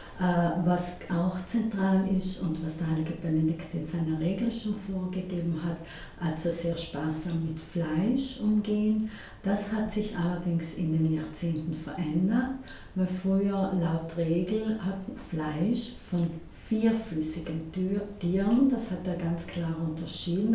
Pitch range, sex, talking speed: 170-200 Hz, female, 130 wpm